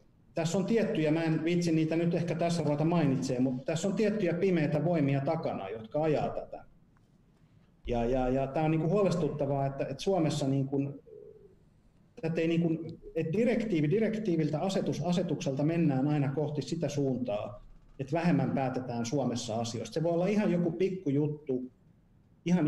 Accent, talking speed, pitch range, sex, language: native, 160 wpm, 135-170 Hz, male, Finnish